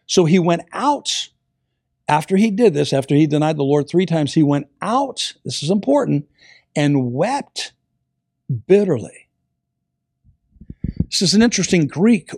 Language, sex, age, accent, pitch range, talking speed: English, male, 60-79, American, 145-195 Hz, 140 wpm